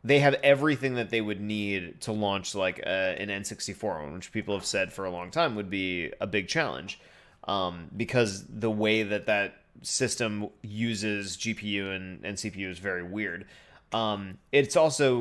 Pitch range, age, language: 100-125 Hz, 30-49, English